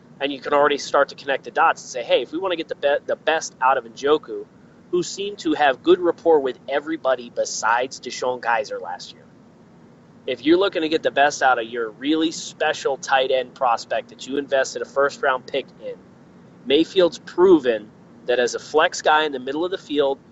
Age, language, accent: 30-49, English, American